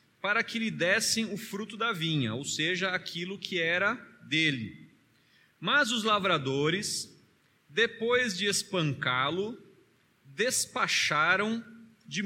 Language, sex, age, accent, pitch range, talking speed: Portuguese, male, 40-59, Brazilian, 150-215 Hz, 110 wpm